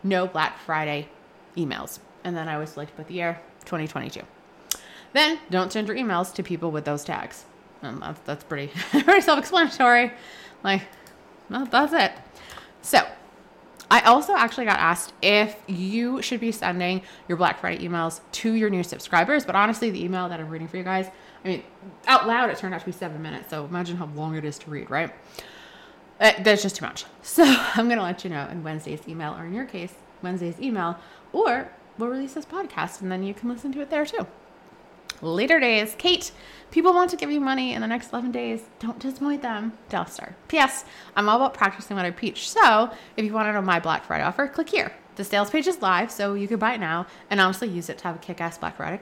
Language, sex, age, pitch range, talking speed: English, female, 20-39, 175-240 Hz, 220 wpm